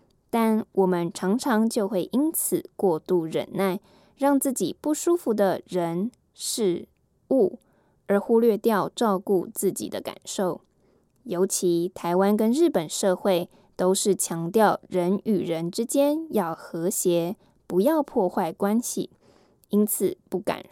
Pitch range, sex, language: 185-235 Hz, female, English